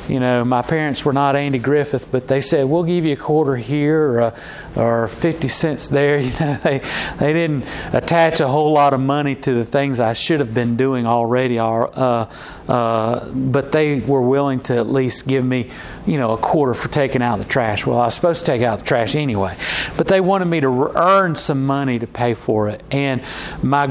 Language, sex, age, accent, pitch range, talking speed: English, male, 40-59, American, 125-160 Hz, 220 wpm